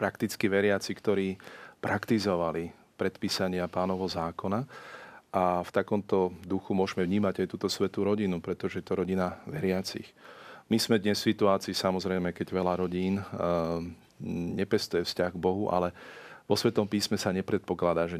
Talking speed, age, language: 140 wpm, 40-59, Slovak